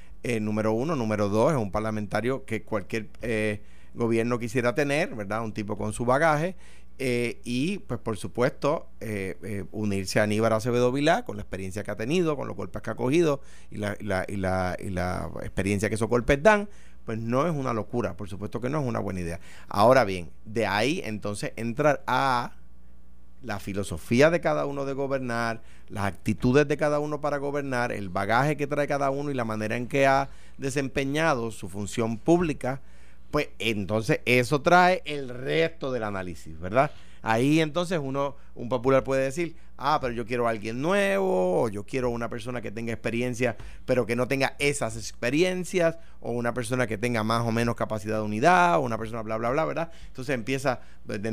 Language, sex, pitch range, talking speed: Spanish, male, 105-135 Hz, 195 wpm